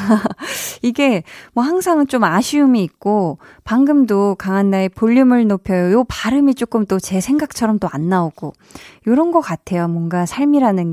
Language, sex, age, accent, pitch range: Korean, female, 20-39, native, 180-255 Hz